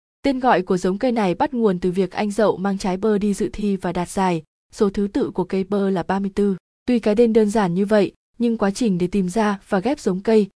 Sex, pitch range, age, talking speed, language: female, 190-225 Hz, 20-39, 260 wpm, Vietnamese